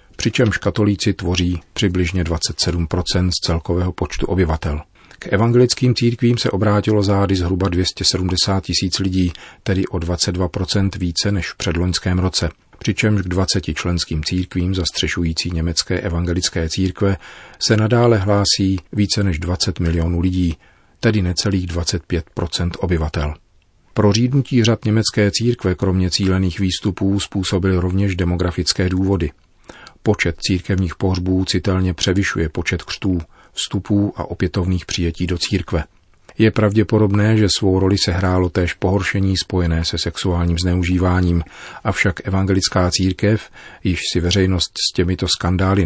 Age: 40-59